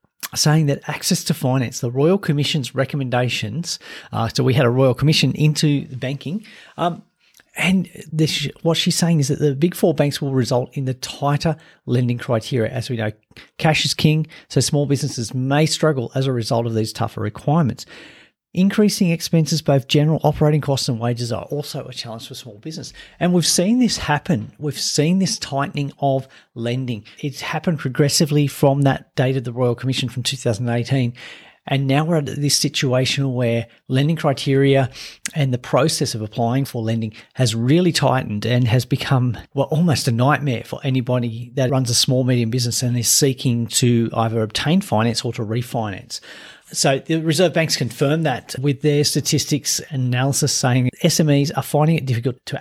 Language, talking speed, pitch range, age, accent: English, 175 wpm, 125-155 Hz, 40-59, Australian